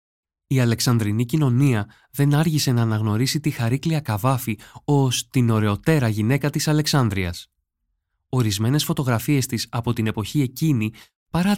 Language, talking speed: Greek, 125 wpm